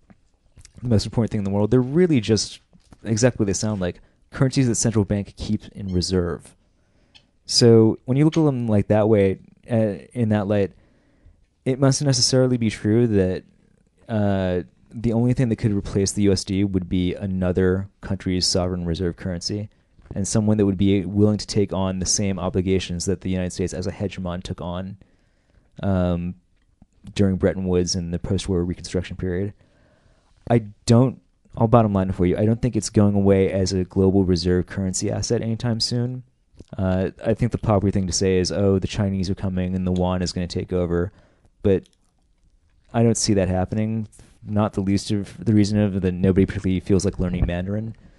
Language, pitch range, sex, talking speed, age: English, 90-110 Hz, male, 185 wpm, 30-49